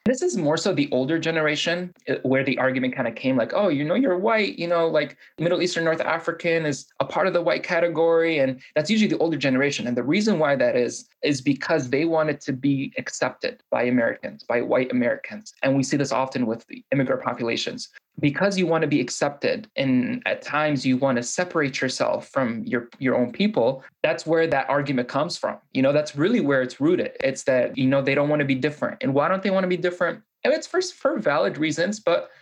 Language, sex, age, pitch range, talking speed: English, male, 20-39, 130-175 Hz, 230 wpm